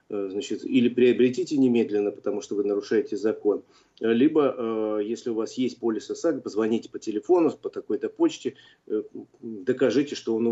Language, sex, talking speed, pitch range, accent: Russian, male, 150 wpm, 115-155 Hz, native